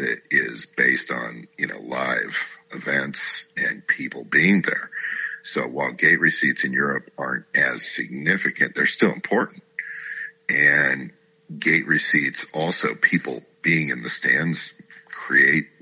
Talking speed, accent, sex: 130 wpm, American, male